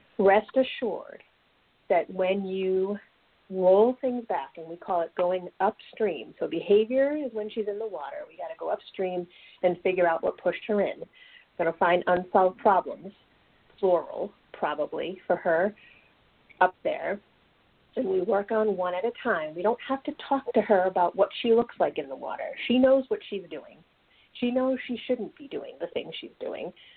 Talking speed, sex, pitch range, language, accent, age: 185 wpm, female, 180-240 Hz, English, American, 30-49